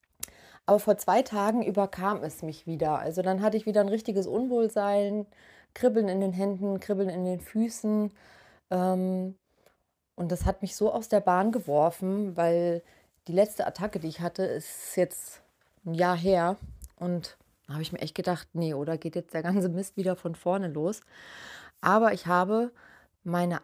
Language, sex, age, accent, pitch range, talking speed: German, female, 30-49, German, 170-200 Hz, 175 wpm